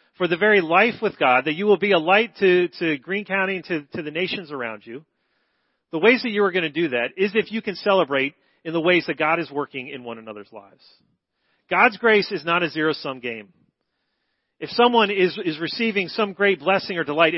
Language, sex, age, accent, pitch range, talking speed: English, male, 40-59, American, 140-195 Hz, 225 wpm